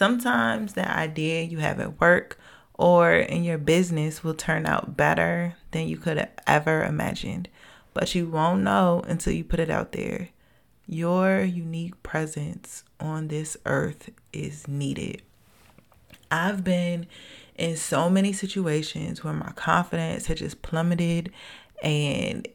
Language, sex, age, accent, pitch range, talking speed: English, female, 20-39, American, 150-175 Hz, 140 wpm